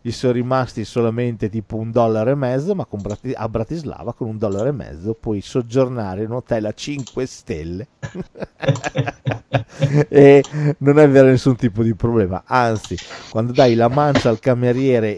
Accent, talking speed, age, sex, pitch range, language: native, 160 wpm, 40-59, male, 115-150 Hz, Italian